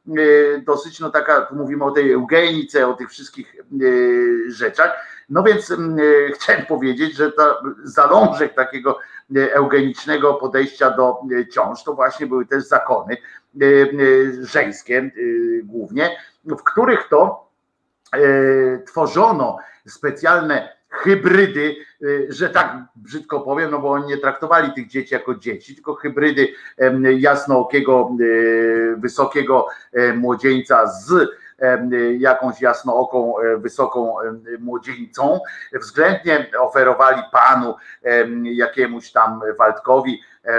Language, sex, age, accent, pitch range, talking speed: Polish, male, 50-69, native, 125-155 Hz, 95 wpm